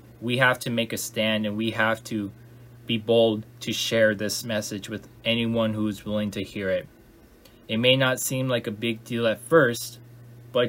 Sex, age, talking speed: male, 20-39, 195 wpm